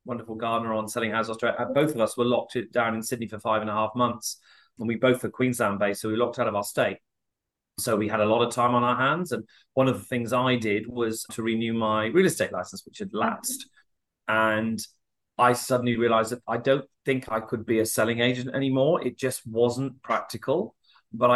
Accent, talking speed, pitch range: British, 220 wpm, 115-135 Hz